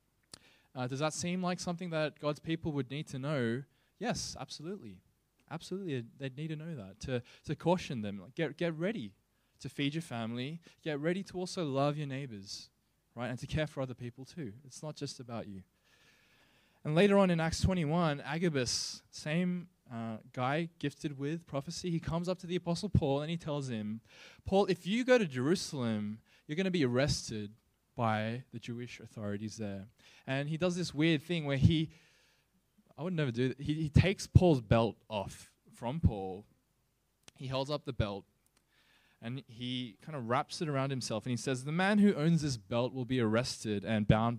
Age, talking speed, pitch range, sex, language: 20-39, 190 wpm, 115-160 Hz, male, English